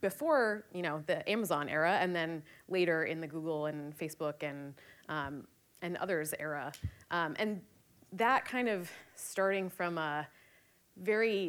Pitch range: 160-205 Hz